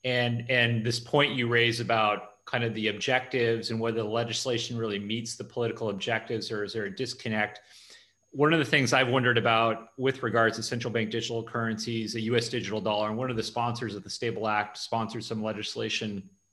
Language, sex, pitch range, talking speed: English, male, 110-125 Hz, 200 wpm